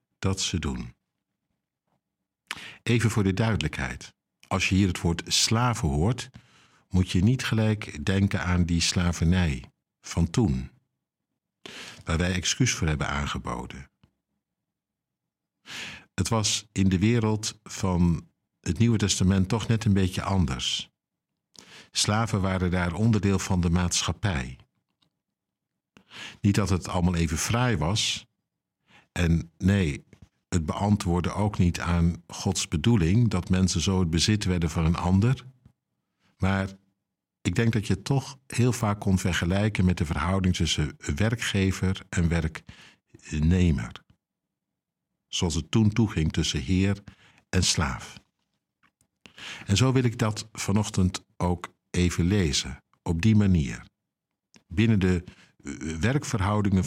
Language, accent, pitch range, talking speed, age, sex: Dutch, Dutch, 85-110 Hz, 125 wpm, 60-79, male